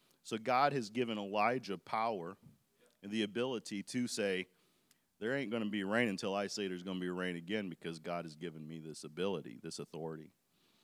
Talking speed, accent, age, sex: 195 wpm, American, 40-59, male